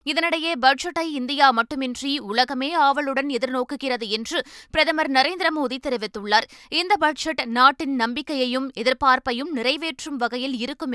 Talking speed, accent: 105 wpm, native